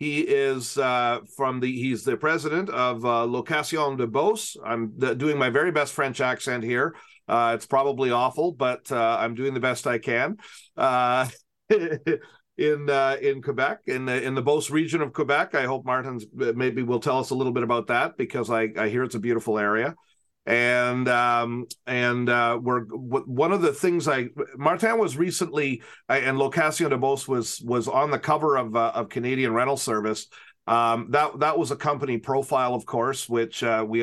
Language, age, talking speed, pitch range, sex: English, 40-59, 190 wpm, 115-140 Hz, male